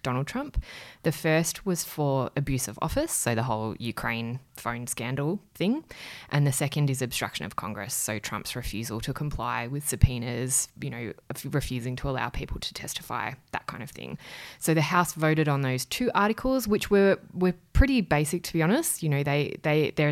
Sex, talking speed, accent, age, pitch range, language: female, 190 wpm, Australian, 20-39, 130-170 Hz, English